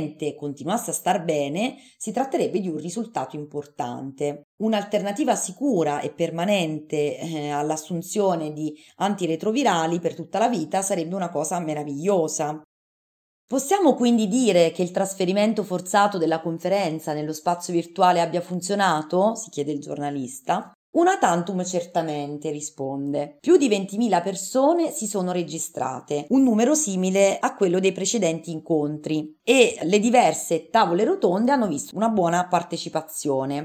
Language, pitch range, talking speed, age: Italian, 160-220 Hz, 130 wpm, 30-49